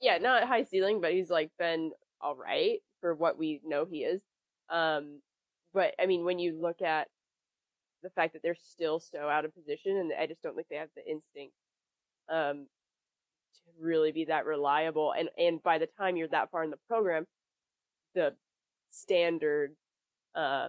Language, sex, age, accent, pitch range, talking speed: English, female, 20-39, American, 155-180 Hz, 175 wpm